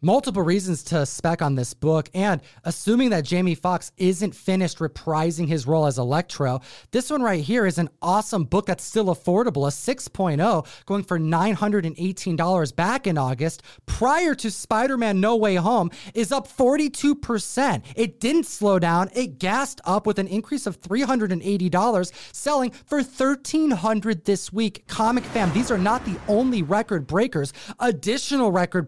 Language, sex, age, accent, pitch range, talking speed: English, male, 30-49, American, 165-225 Hz, 155 wpm